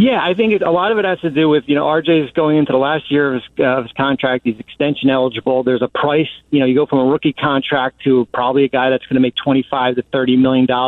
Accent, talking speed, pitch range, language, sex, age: American, 290 wpm, 135-160 Hz, English, male, 40-59